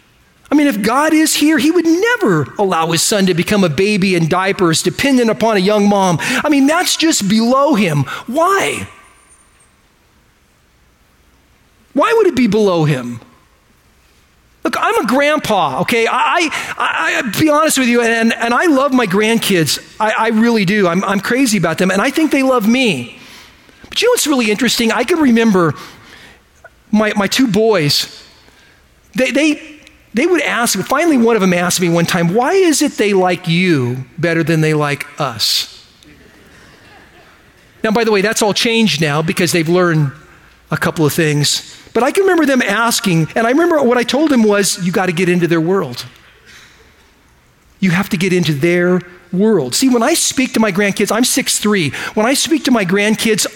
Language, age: English, 40-59